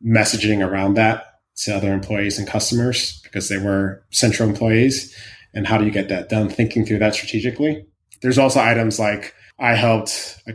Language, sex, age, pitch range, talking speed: English, male, 20-39, 105-120 Hz, 175 wpm